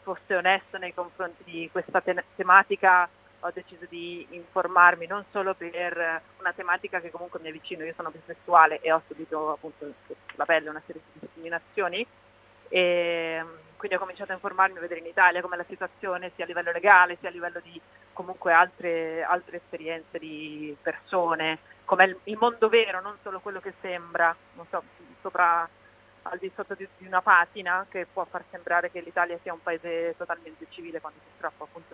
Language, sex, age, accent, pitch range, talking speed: Italian, female, 30-49, native, 165-190 Hz, 175 wpm